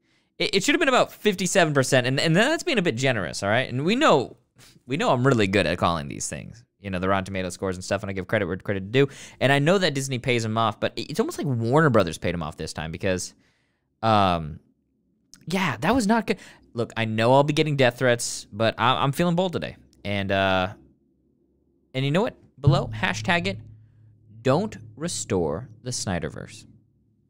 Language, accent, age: English, American, 20-39